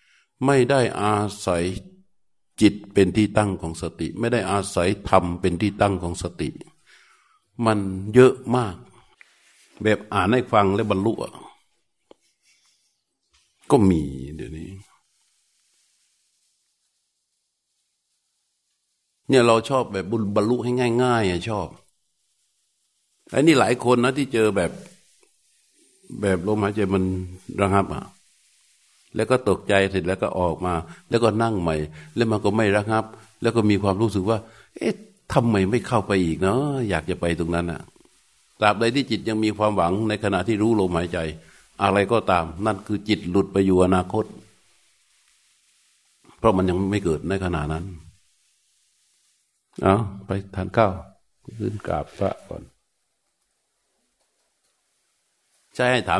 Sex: male